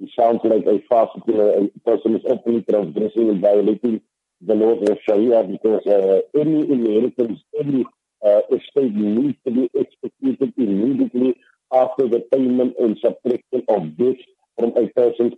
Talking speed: 150 wpm